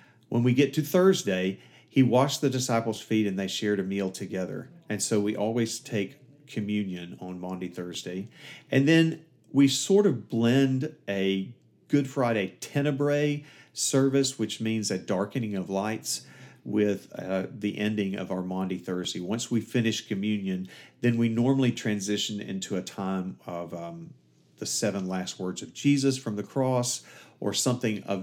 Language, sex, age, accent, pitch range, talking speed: English, male, 50-69, American, 95-125 Hz, 160 wpm